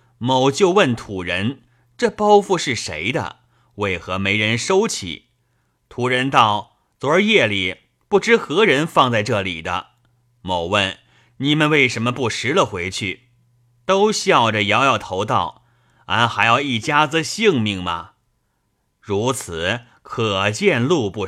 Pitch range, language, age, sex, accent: 100-135 Hz, Chinese, 30-49, male, native